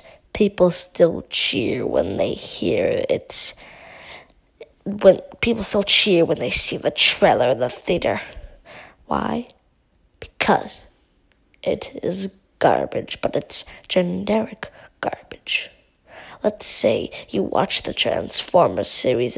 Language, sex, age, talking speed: English, female, 20-39, 100 wpm